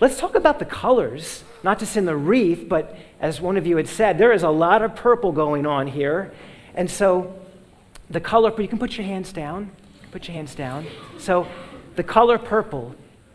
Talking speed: 200 wpm